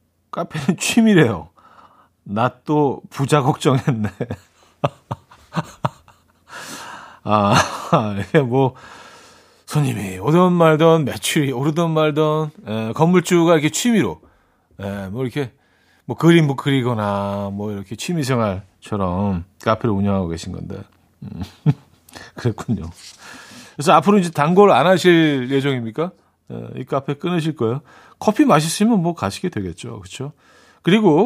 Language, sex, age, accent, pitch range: Korean, male, 40-59, native, 105-160 Hz